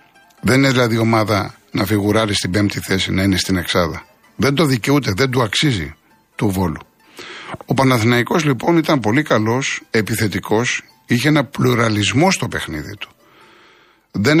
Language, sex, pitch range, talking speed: Greek, male, 105-160 Hz, 145 wpm